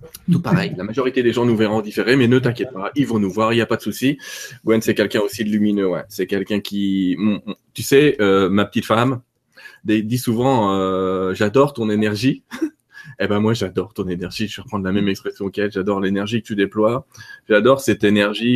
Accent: French